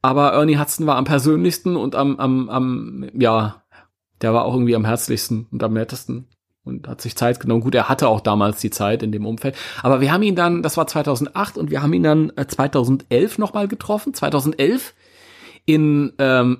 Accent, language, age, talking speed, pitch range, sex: German, German, 30-49, 195 wpm, 115-160 Hz, male